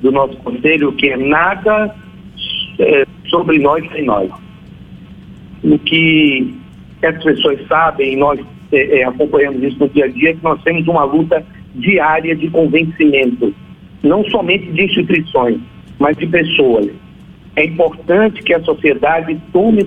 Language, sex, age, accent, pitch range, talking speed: Portuguese, male, 60-79, Brazilian, 160-195 Hz, 135 wpm